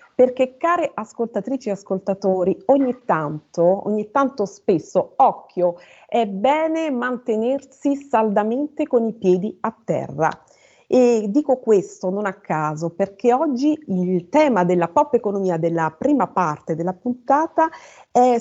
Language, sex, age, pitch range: Italian, female, 40-59, 195-275 Hz